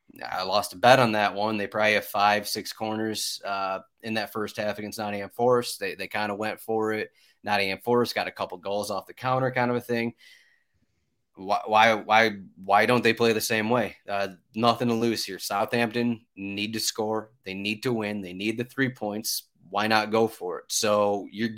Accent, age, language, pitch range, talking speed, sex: American, 30-49, English, 105-120 Hz, 210 wpm, male